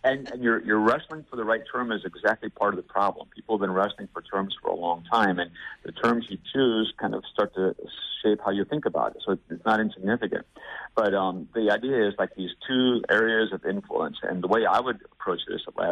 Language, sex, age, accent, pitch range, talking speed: English, male, 50-69, American, 95-115 Hz, 240 wpm